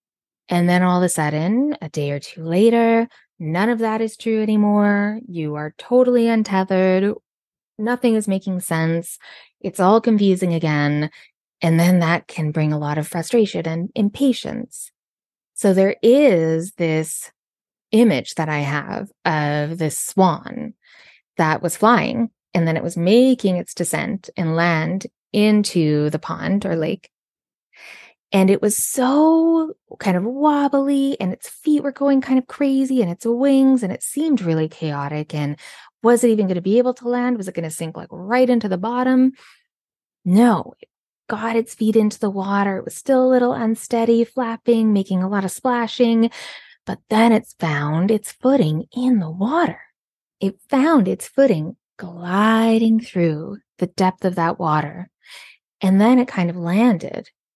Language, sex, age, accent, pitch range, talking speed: English, female, 20-39, American, 170-235 Hz, 165 wpm